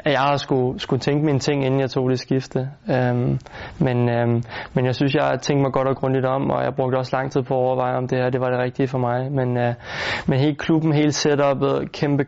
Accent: native